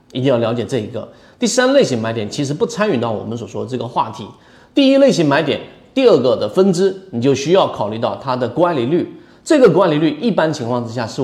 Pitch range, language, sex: 120-165 Hz, Chinese, male